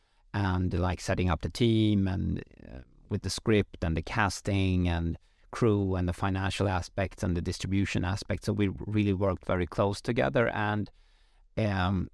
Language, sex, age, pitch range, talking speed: English, male, 30-49, 95-110 Hz, 165 wpm